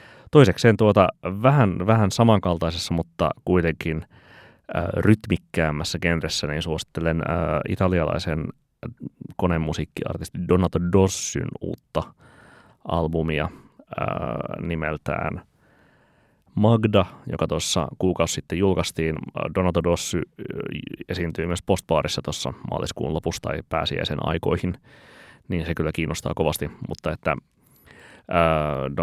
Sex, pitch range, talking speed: male, 80-90 Hz, 100 wpm